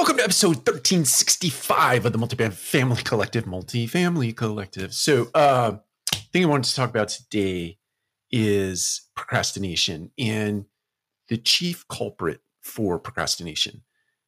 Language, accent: English, American